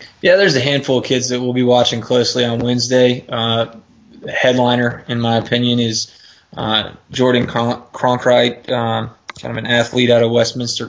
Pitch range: 115-125 Hz